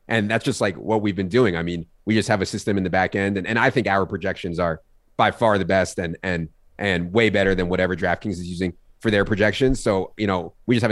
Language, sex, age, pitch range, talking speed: English, male, 30-49, 90-110 Hz, 270 wpm